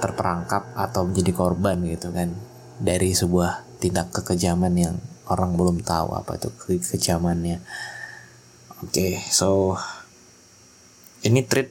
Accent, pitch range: native, 90-115 Hz